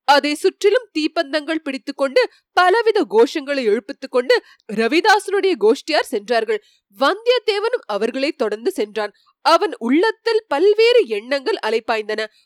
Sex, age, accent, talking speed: female, 30-49, native, 70 wpm